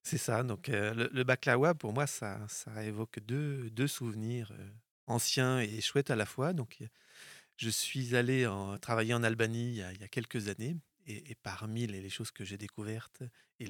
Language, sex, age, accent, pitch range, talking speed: French, male, 30-49, French, 110-140 Hz, 210 wpm